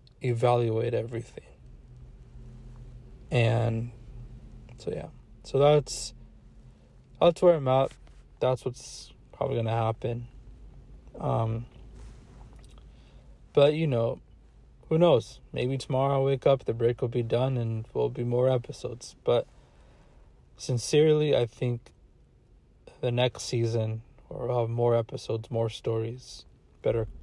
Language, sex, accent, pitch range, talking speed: English, male, American, 115-125 Hz, 115 wpm